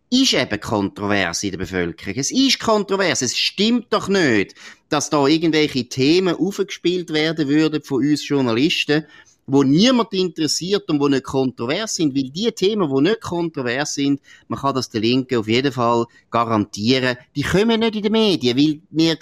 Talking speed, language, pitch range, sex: 170 wpm, German, 125-175 Hz, male